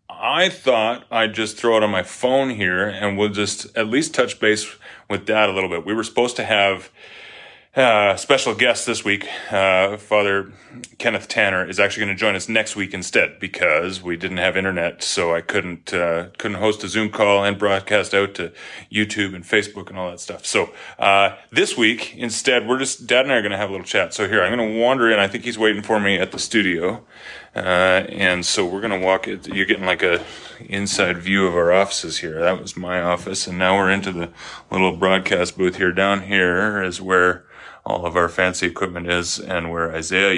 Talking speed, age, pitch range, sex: 220 wpm, 30-49, 90-105 Hz, male